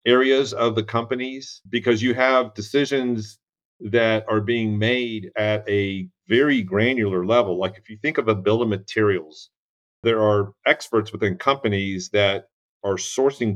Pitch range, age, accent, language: 95-115 Hz, 40-59, American, English